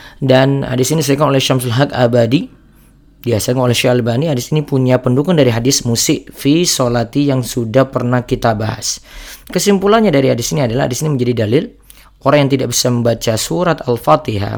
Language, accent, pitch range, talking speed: Indonesian, native, 120-145 Hz, 165 wpm